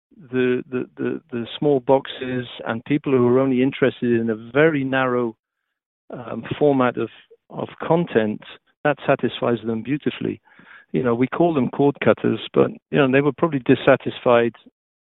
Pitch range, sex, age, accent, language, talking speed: 120-140 Hz, male, 50-69, British, English, 155 wpm